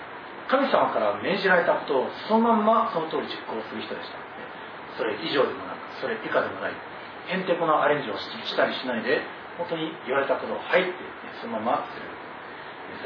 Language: Japanese